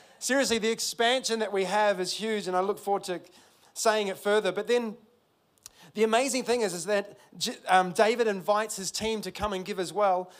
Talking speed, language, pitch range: 200 wpm, English, 160-210 Hz